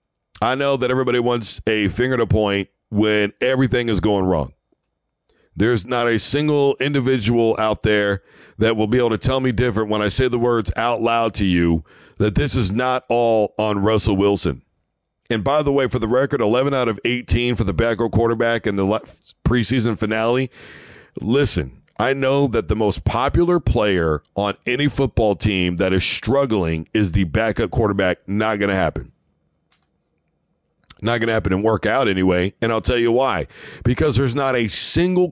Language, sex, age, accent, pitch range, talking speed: English, male, 50-69, American, 100-125 Hz, 180 wpm